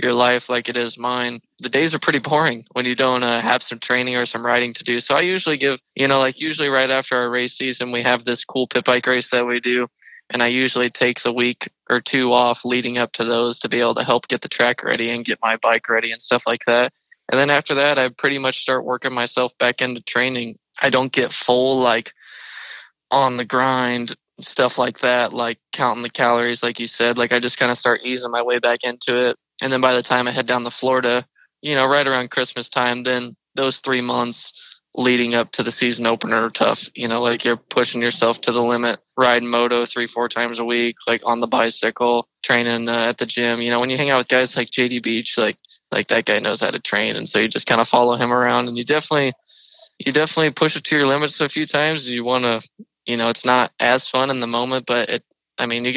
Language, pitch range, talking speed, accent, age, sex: English, 120-130 Hz, 250 wpm, American, 20-39, male